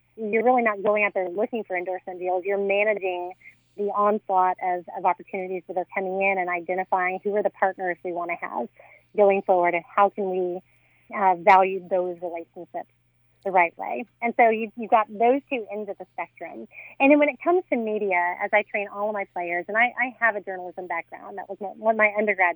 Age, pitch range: 30-49, 180-205 Hz